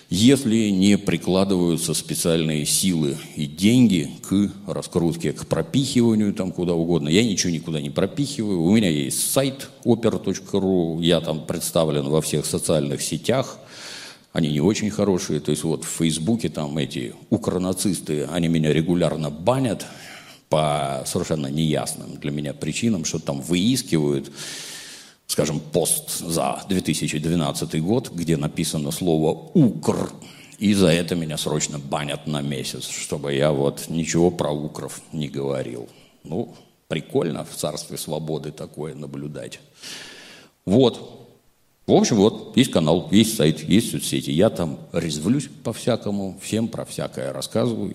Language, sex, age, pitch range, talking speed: Russian, male, 50-69, 75-95 Hz, 135 wpm